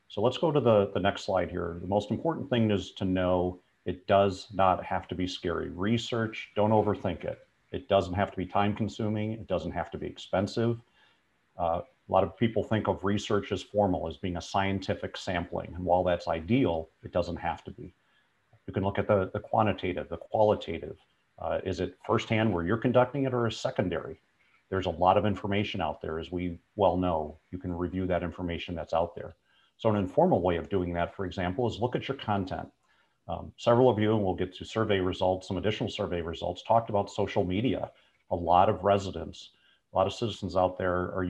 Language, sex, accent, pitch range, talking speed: English, male, American, 90-105 Hz, 210 wpm